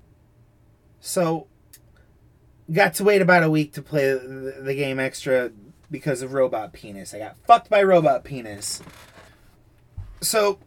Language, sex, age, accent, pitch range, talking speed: English, male, 30-49, American, 120-170 Hz, 130 wpm